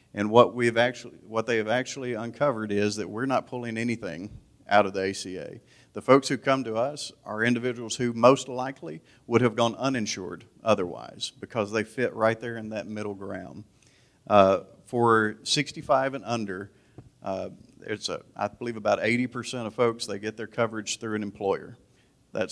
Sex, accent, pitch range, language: male, American, 105-125 Hz, English